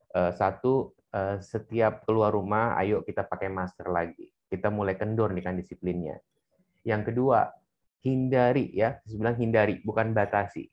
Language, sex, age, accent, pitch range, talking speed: Indonesian, male, 30-49, native, 105-130 Hz, 130 wpm